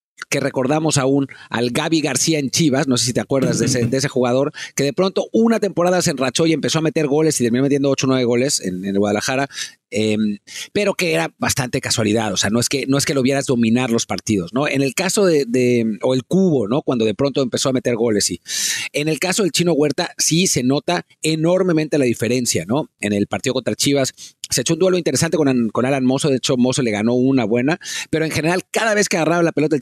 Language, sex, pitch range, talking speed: English, male, 125-155 Hz, 245 wpm